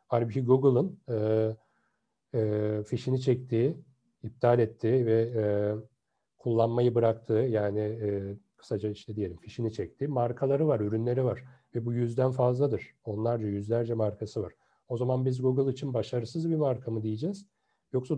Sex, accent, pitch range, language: male, native, 110-140 Hz, Turkish